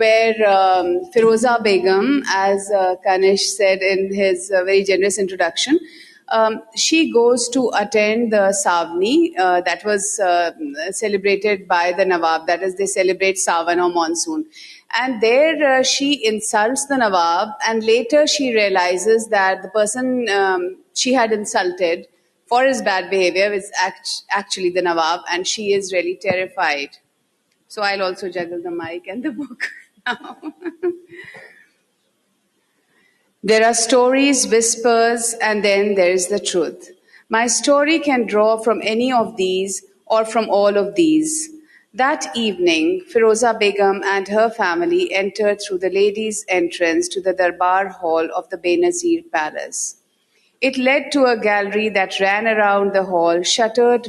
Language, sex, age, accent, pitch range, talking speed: English, female, 30-49, Indian, 185-245 Hz, 145 wpm